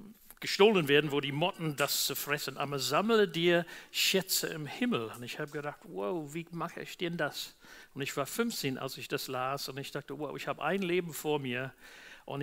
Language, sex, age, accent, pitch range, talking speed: German, male, 50-69, German, 140-175 Hz, 210 wpm